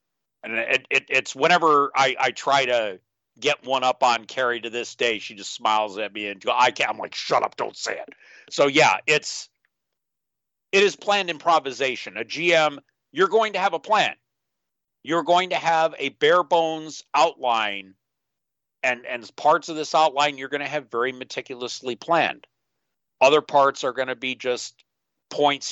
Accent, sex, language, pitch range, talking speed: American, male, English, 120-155 Hz, 175 wpm